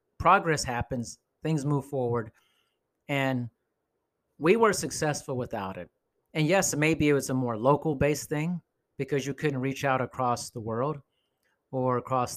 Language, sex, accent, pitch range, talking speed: English, male, American, 120-155 Hz, 145 wpm